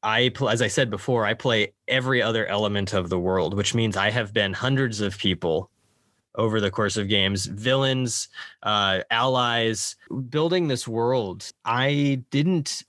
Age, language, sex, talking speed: 20-39, English, male, 160 wpm